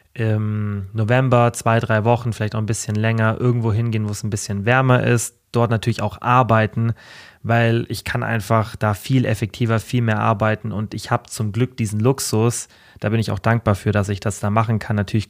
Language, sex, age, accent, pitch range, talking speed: German, male, 30-49, German, 105-120 Hz, 205 wpm